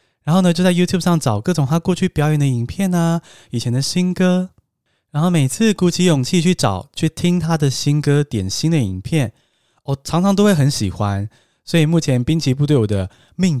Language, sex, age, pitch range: Chinese, male, 20-39, 115-170 Hz